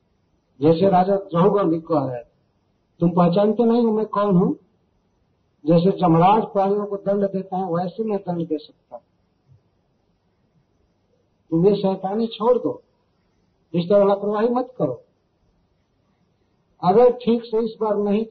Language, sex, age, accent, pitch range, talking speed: Hindi, male, 50-69, native, 150-195 Hz, 135 wpm